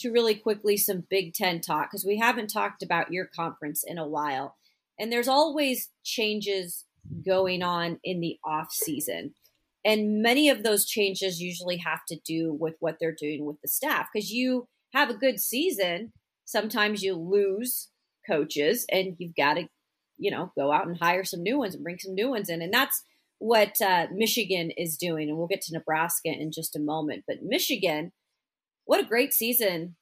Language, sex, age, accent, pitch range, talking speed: English, female, 30-49, American, 165-210 Hz, 190 wpm